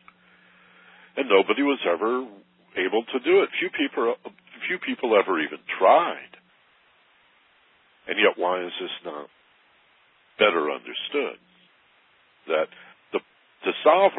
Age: 60-79